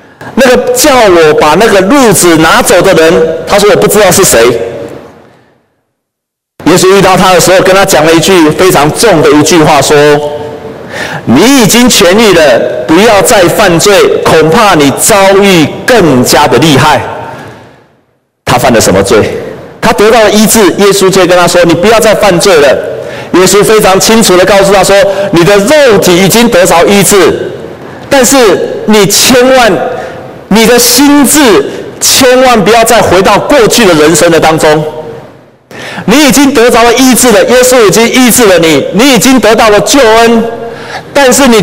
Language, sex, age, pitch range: Chinese, male, 50-69, 175-245 Hz